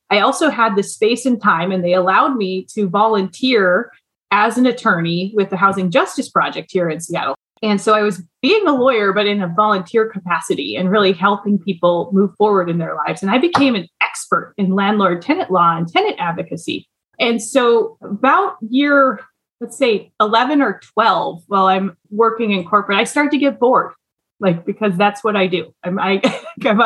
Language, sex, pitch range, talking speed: English, female, 190-255 Hz, 185 wpm